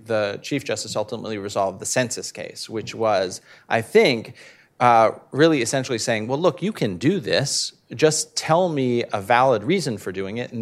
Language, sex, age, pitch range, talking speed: English, male, 40-59, 115-150 Hz, 180 wpm